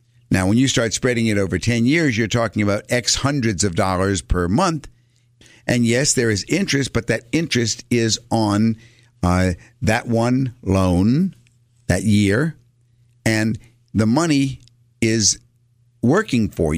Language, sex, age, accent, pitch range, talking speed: English, male, 50-69, American, 100-125 Hz, 145 wpm